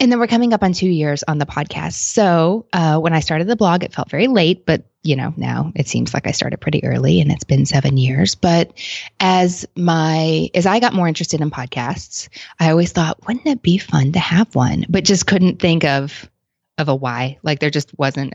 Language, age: English, 20-39